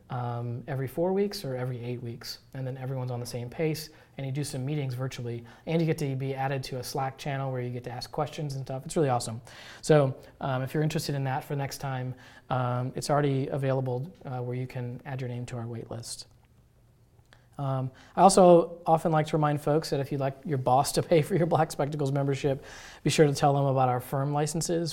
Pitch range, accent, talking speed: 125-150 Hz, American, 235 wpm